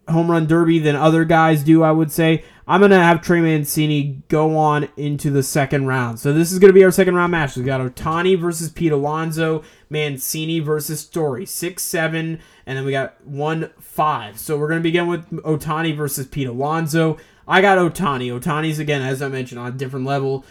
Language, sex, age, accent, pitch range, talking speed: English, male, 20-39, American, 135-160 Hz, 200 wpm